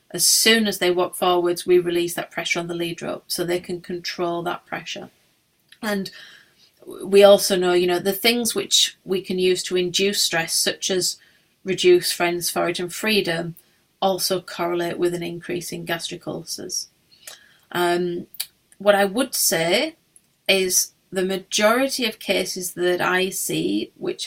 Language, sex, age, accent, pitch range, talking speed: Swedish, female, 30-49, British, 175-195 Hz, 160 wpm